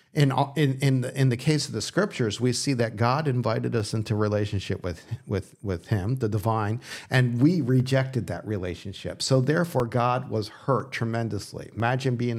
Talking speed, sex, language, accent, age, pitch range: 180 wpm, male, English, American, 50-69, 110-135 Hz